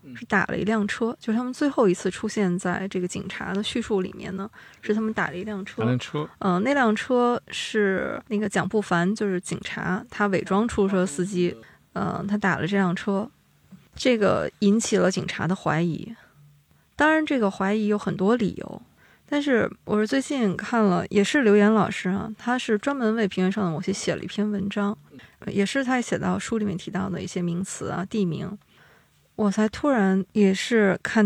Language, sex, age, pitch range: Chinese, female, 20-39, 185-220 Hz